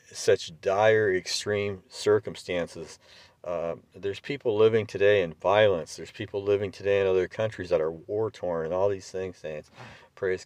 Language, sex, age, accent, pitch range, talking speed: English, male, 50-69, American, 85-130 Hz, 155 wpm